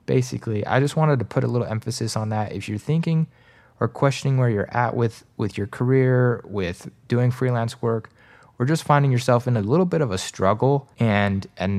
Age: 20-39